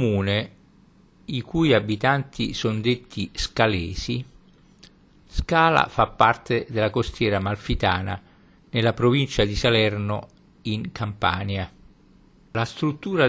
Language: Italian